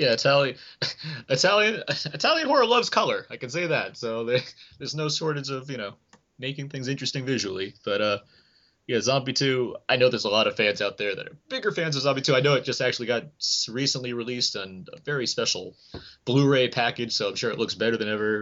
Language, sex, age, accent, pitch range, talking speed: English, male, 20-39, American, 115-150 Hz, 210 wpm